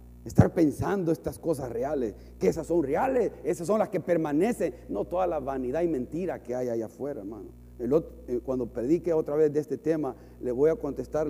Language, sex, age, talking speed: Spanish, male, 40-59, 190 wpm